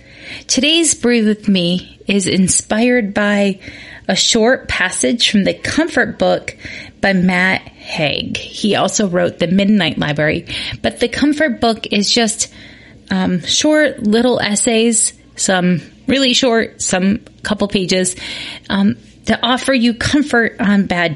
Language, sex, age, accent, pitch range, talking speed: English, female, 30-49, American, 170-235 Hz, 130 wpm